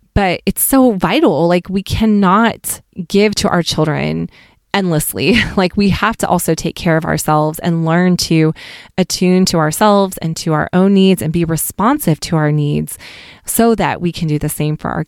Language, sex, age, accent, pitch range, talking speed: English, female, 20-39, American, 155-185 Hz, 185 wpm